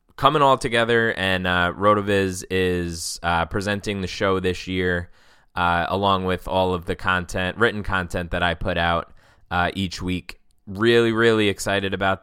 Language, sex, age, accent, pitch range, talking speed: English, male, 20-39, American, 90-105 Hz, 160 wpm